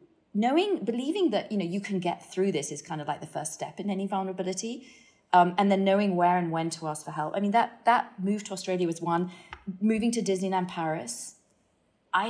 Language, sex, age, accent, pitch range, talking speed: English, female, 30-49, British, 165-210 Hz, 220 wpm